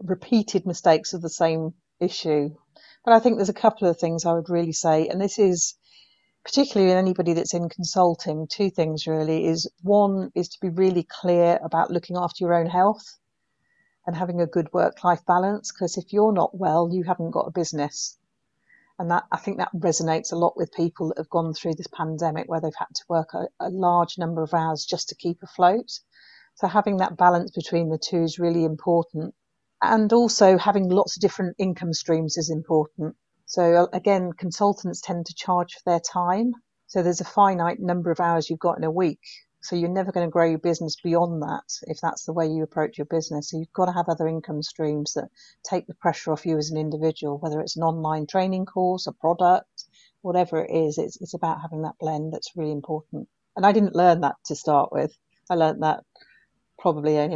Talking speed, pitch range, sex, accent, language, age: 210 wpm, 160-185 Hz, female, British, English, 40-59